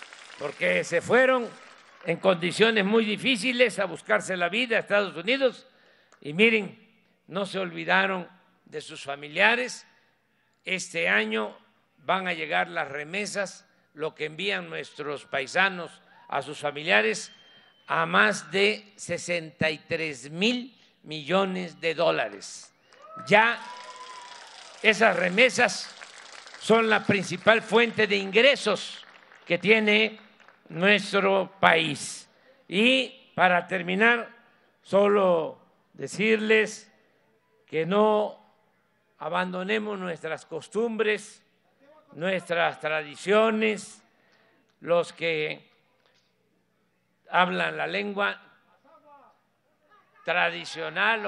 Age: 50-69